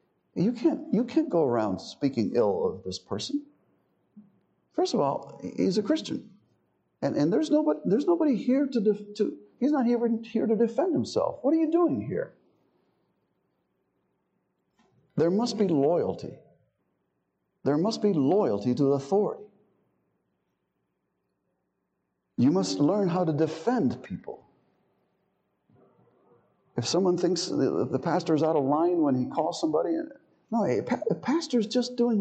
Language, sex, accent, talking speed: English, male, American, 140 wpm